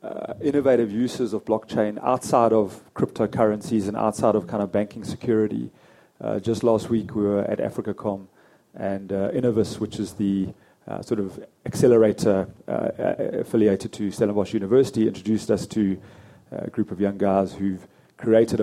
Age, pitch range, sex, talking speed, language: 30-49, 100-115 Hz, male, 160 wpm, English